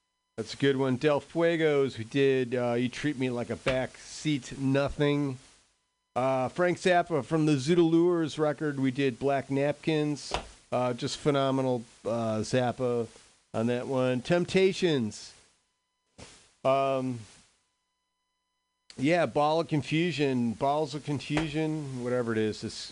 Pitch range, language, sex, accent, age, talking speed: 115-155 Hz, English, male, American, 40-59, 125 wpm